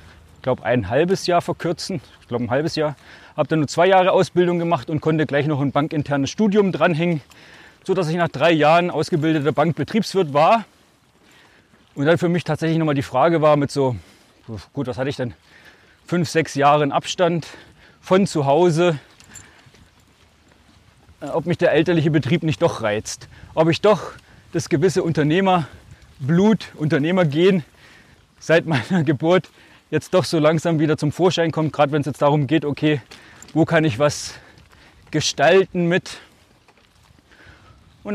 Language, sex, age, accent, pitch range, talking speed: German, male, 30-49, German, 140-175 Hz, 155 wpm